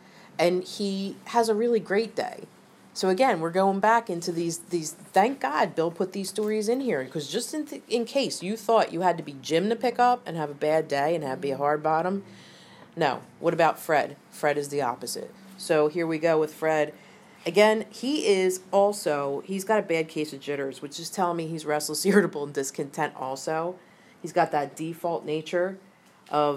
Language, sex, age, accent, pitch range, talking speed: English, female, 40-59, American, 155-205 Hz, 205 wpm